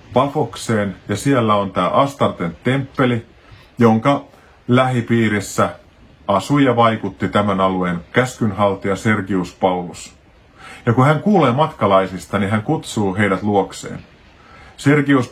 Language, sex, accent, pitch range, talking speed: Finnish, male, native, 95-125 Hz, 110 wpm